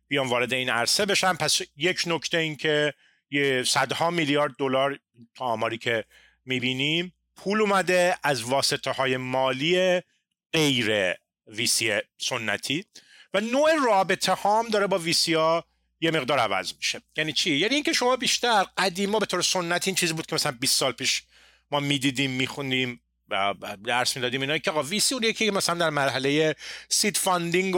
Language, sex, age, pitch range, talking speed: Persian, male, 30-49, 130-180 Hz, 160 wpm